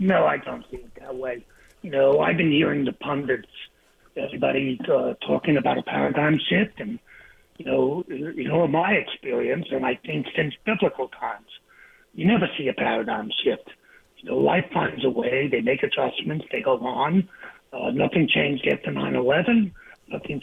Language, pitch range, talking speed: English, 150-235 Hz, 175 wpm